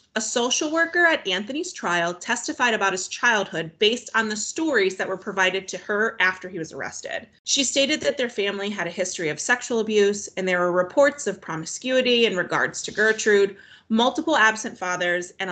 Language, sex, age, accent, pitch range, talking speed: English, female, 30-49, American, 185-255 Hz, 185 wpm